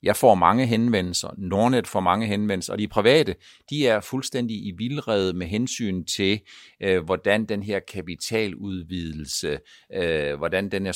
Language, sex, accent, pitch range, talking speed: Danish, male, native, 95-125 Hz, 140 wpm